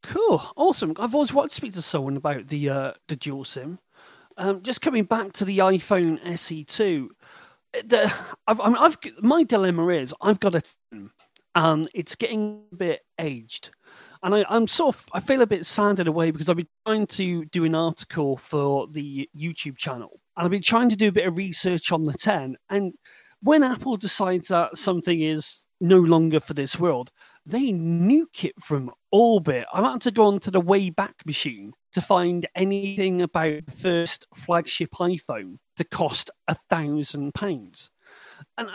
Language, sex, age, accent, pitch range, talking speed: English, male, 40-59, British, 160-215 Hz, 180 wpm